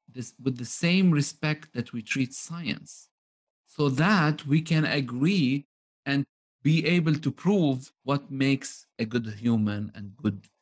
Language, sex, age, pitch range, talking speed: English, male, 50-69, 115-165 Hz, 140 wpm